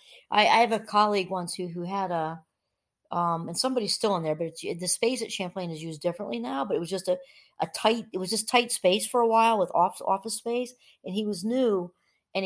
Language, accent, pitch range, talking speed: English, American, 180-240 Hz, 240 wpm